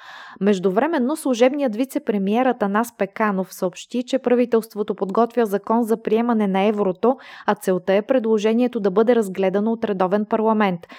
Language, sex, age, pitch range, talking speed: Bulgarian, female, 20-39, 200-240 Hz, 135 wpm